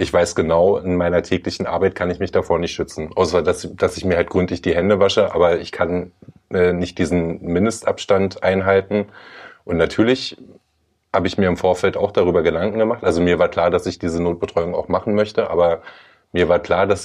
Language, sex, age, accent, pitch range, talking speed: German, male, 30-49, German, 85-100 Hz, 205 wpm